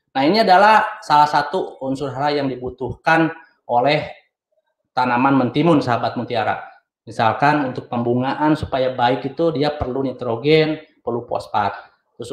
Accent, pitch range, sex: native, 125-155 Hz, male